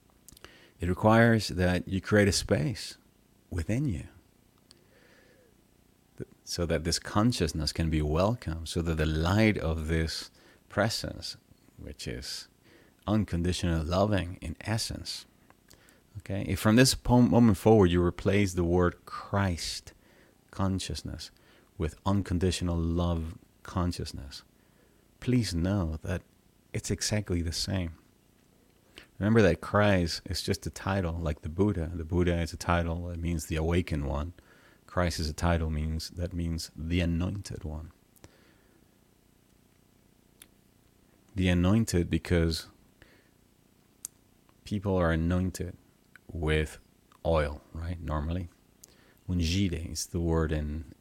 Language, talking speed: English, 115 wpm